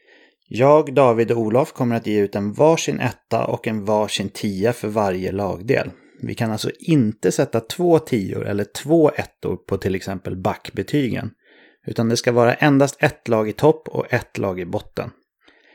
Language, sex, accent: English, male, Swedish